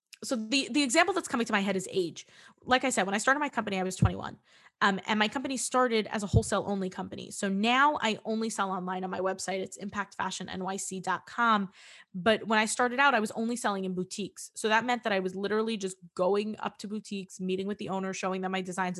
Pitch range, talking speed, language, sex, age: 195-280 Hz, 235 wpm, English, female, 20-39